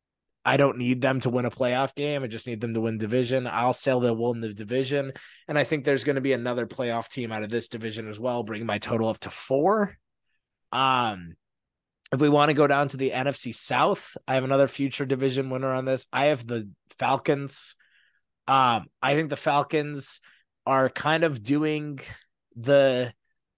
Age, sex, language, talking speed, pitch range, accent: 20-39, male, English, 200 wpm, 120-140 Hz, American